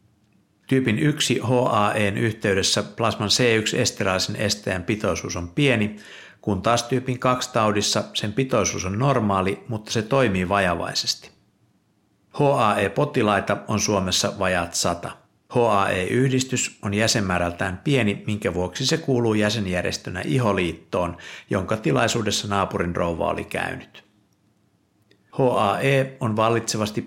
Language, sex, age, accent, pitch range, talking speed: Finnish, male, 60-79, native, 95-120 Hz, 100 wpm